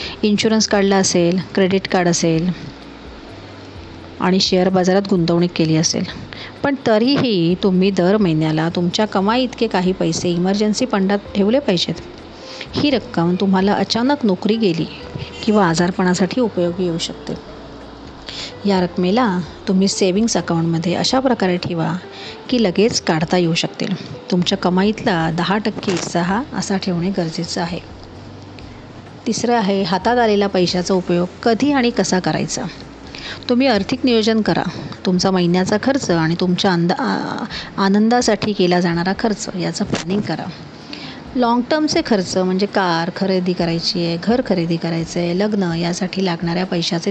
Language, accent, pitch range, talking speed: Marathi, native, 170-210 Hz, 120 wpm